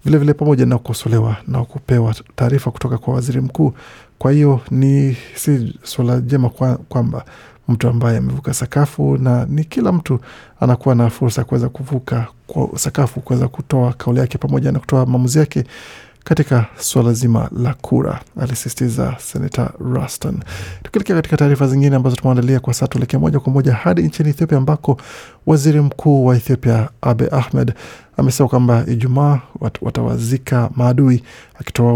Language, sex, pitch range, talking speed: Swahili, male, 120-140 Hz, 145 wpm